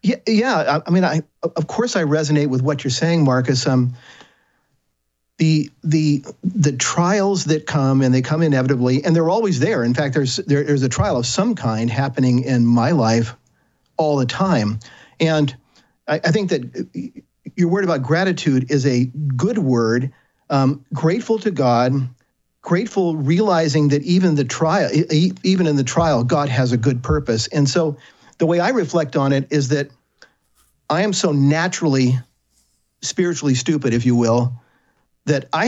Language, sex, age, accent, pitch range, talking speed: English, male, 50-69, American, 125-165 Hz, 165 wpm